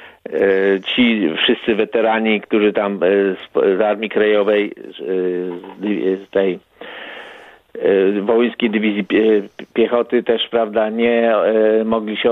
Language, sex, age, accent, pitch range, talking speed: Polish, male, 50-69, native, 105-120 Hz, 90 wpm